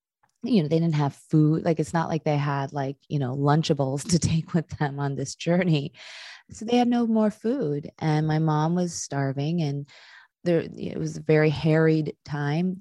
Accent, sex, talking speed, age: American, female, 195 wpm, 20-39